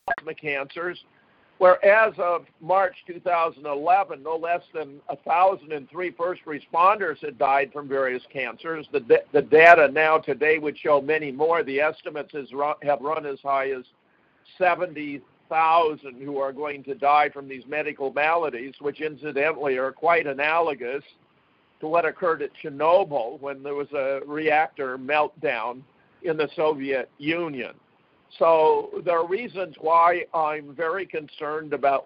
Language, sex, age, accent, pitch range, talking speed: English, male, 50-69, American, 140-170 Hz, 135 wpm